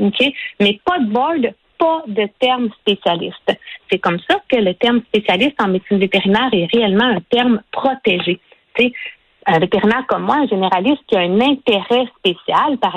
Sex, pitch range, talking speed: female, 195-270 Hz, 180 wpm